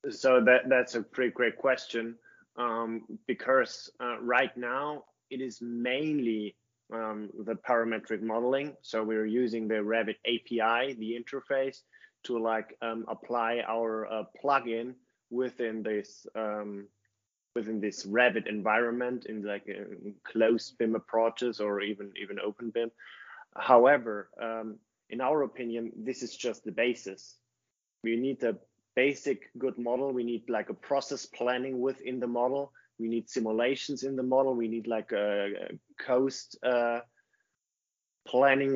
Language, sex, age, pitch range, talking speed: English, male, 20-39, 110-125 Hz, 140 wpm